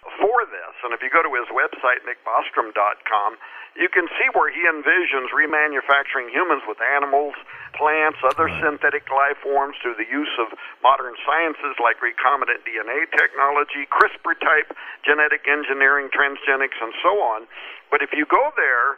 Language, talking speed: English, 150 wpm